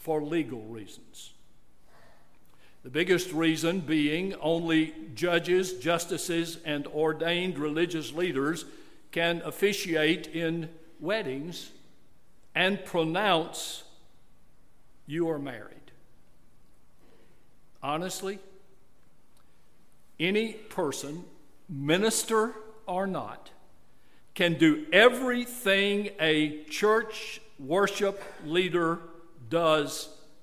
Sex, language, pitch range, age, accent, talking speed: male, English, 155-195 Hz, 60-79, American, 75 wpm